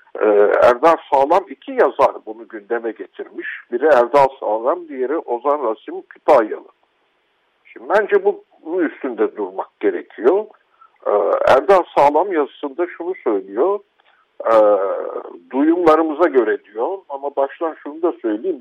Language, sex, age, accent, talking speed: Turkish, male, 60-79, native, 105 wpm